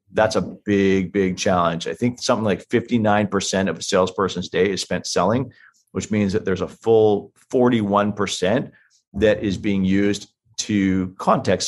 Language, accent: English, American